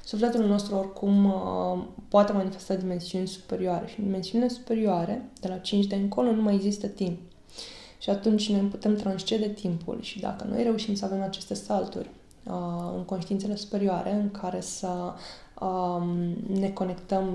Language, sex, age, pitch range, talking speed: Romanian, female, 20-39, 185-210 Hz, 140 wpm